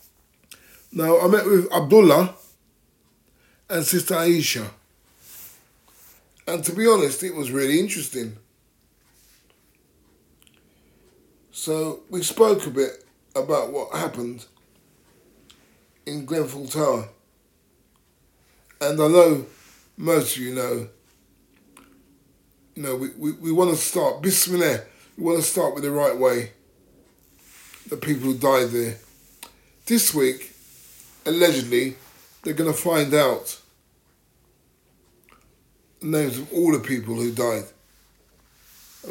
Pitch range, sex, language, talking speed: 120-170 Hz, male, English, 110 wpm